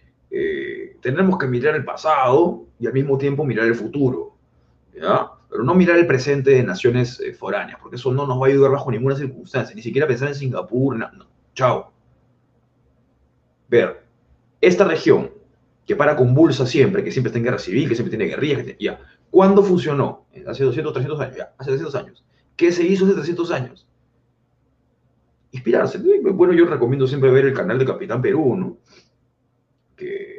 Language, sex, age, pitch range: Spanish, male, 30-49, 125-200 Hz